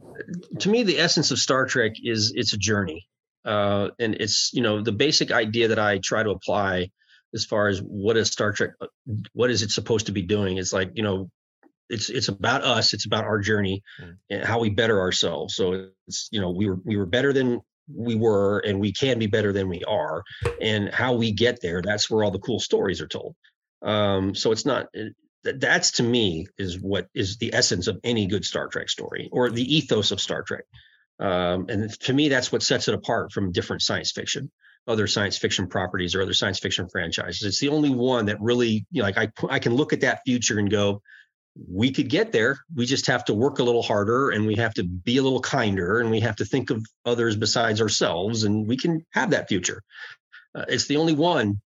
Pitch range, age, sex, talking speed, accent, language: 100-125 Hz, 30-49, male, 225 wpm, American, English